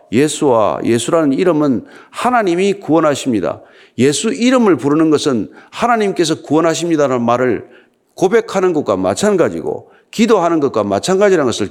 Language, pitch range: Korean, 125-175 Hz